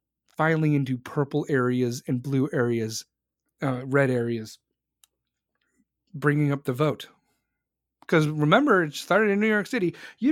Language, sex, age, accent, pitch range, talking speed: English, male, 30-49, American, 140-190 Hz, 135 wpm